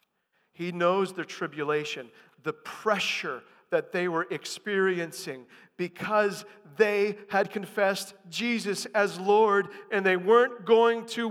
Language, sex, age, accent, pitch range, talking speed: English, male, 40-59, American, 195-235 Hz, 115 wpm